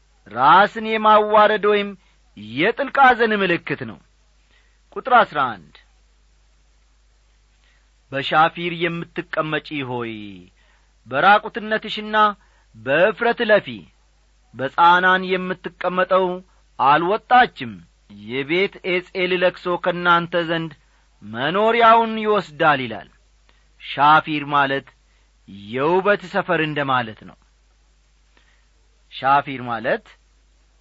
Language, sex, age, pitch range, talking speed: Amharic, male, 40-59, 135-210 Hz, 65 wpm